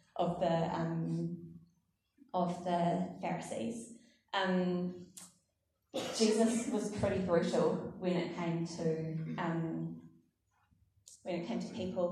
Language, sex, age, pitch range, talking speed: English, female, 20-39, 170-200 Hz, 105 wpm